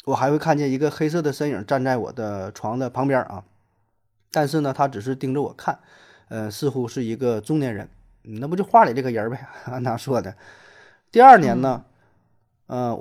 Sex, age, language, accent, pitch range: male, 20-39, Chinese, native, 110-145 Hz